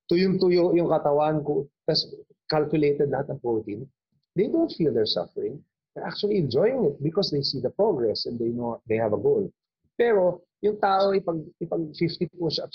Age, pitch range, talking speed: 30-49, 115-175 Hz, 170 wpm